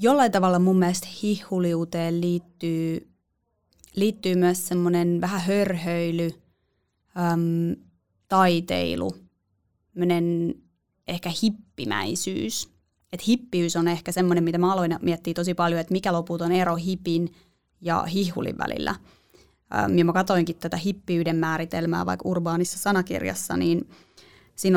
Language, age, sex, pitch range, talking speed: Finnish, 20-39, female, 170-190 Hz, 110 wpm